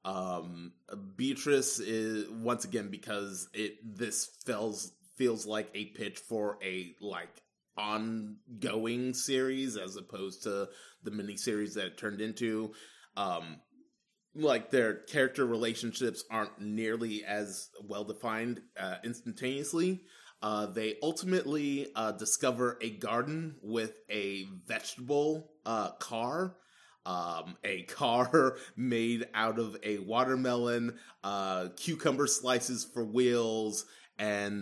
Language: English